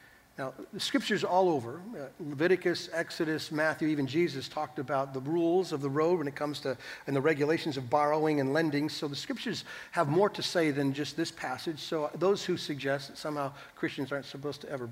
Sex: male